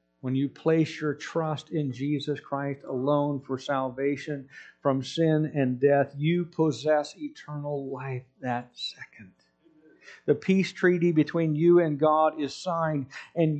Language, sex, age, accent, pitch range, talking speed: English, male, 50-69, American, 130-175 Hz, 135 wpm